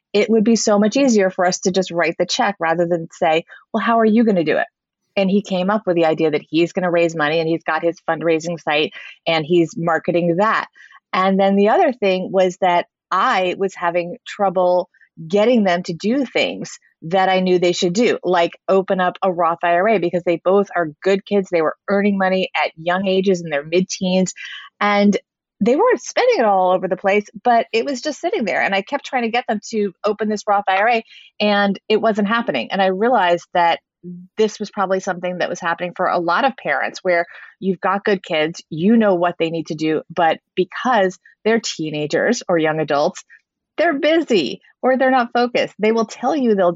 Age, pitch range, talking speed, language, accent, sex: 30-49, 175-215 Hz, 215 wpm, English, American, female